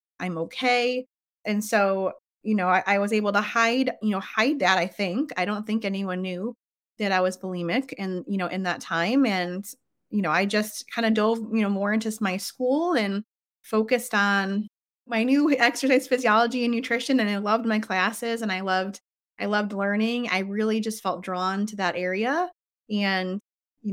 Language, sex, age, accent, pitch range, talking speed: English, female, 20-39, American, 185-230 Hz, 195 wpm